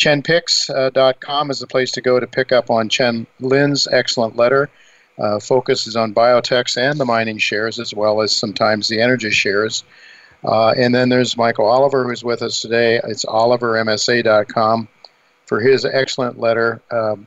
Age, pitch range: 50-69, 110-130 Hz